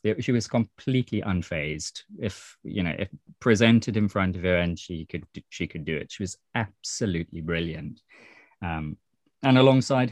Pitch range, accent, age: 90-115 Hz, British, 20-39